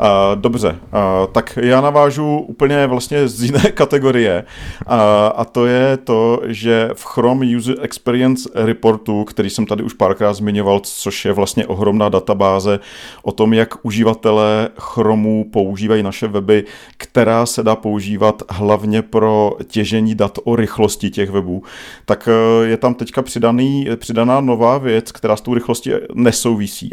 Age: 40-59